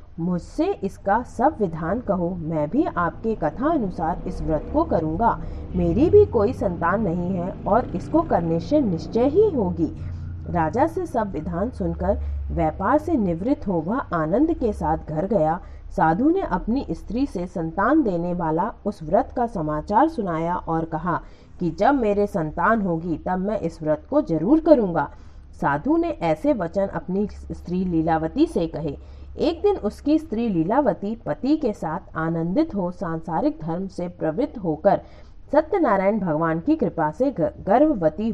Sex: female